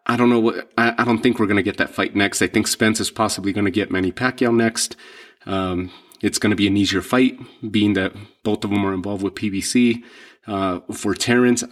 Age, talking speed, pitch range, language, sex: 30-49, 220 wpm, 105-120 Hz, English, male